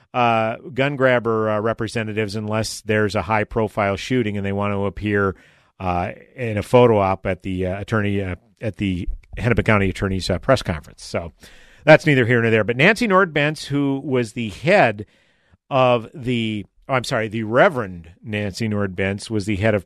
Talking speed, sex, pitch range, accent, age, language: 180 wpm, male, 105-135 Hz, American, 50-69, English